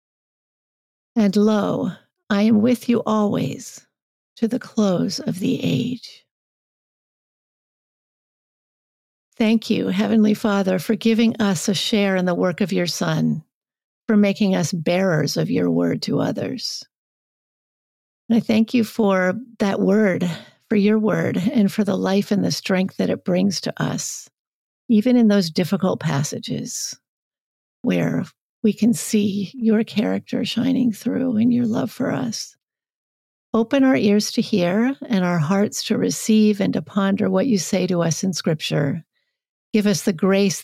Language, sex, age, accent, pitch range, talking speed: English, female, 50-69, American, 180-225 Hz, 150 wpm